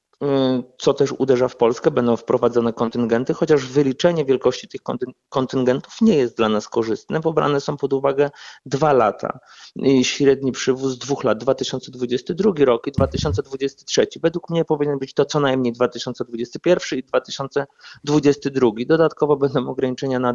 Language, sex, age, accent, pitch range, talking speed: Polish, male, 30-49, native, 125-150 Hz, 140 wpm